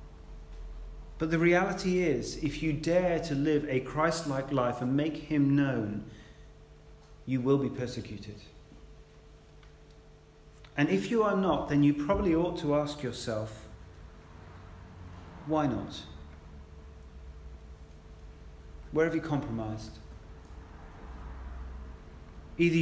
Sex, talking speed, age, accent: male, 105 wpm, 40-59, British